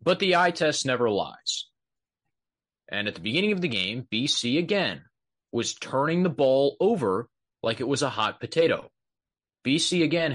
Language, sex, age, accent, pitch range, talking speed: English, male, 30-49, American, 125-195 Hz, 160 wpm